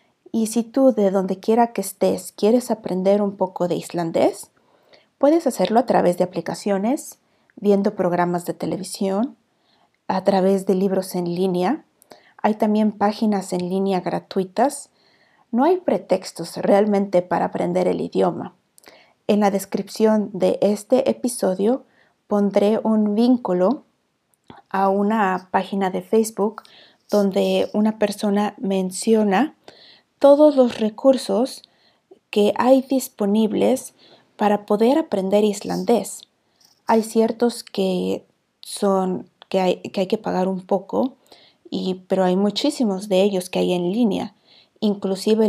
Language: Spanish